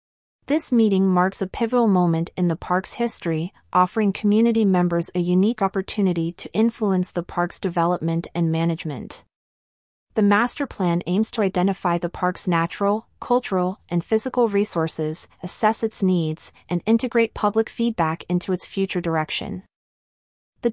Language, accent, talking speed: English, American, 140 wpm